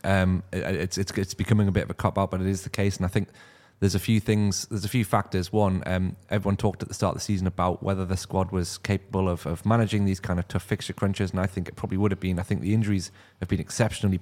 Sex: male